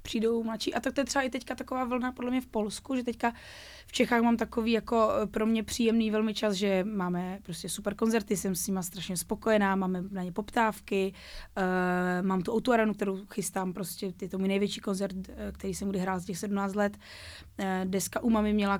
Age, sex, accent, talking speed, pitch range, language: 20-39, female, native, 205 wpm, 200-230 Hz, Czech